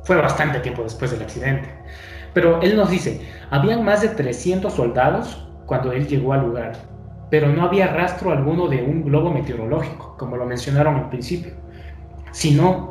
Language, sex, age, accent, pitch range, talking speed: Spanish, male, 20-39, Mexican, 115-165 Hz, 165 wpm